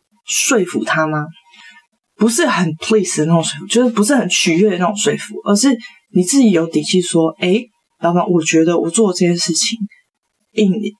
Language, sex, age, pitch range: Chinese, female, 20-39, 170-220 Hz